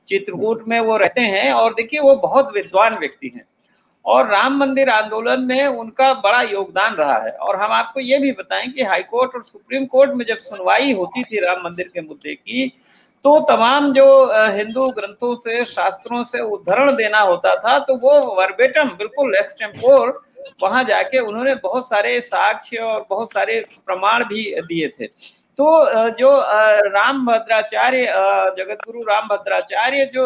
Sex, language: male, Hindi